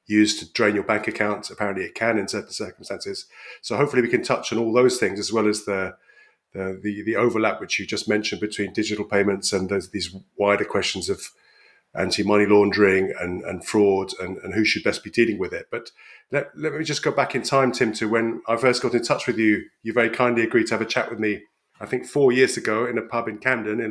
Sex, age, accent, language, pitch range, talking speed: male, 30-49, British, English, 105-125 Hz, 240 wpm